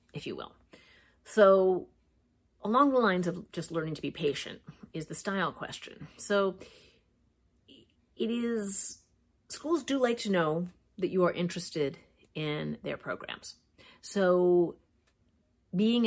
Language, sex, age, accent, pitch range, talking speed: English, female, 40-59, American, 160-200 Hz, 125 wpm